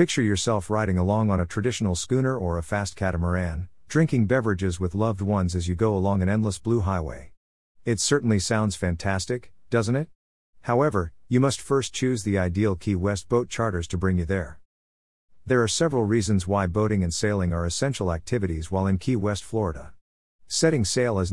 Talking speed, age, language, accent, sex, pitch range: 185 wpm, 50-69, English, American, male, 90-115 Hz